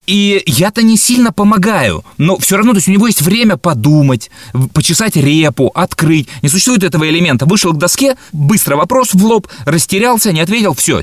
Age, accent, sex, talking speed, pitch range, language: 30-49, native, male, 170 wpm, 125-185 Hz, Russian